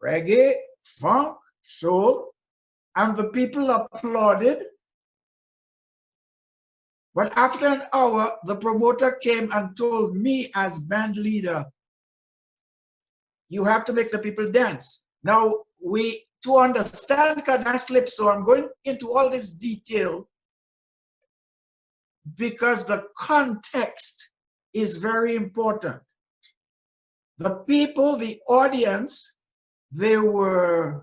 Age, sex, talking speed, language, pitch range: 60-79, male, 105 wpm, English, 195-250 Hz